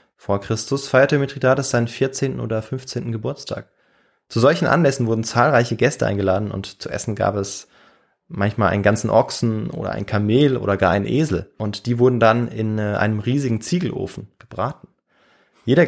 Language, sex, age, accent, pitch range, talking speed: German, male, 20-39, German, 110-140 Hz, 160 wpm